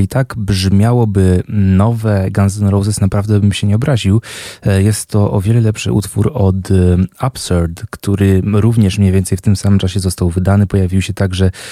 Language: Polish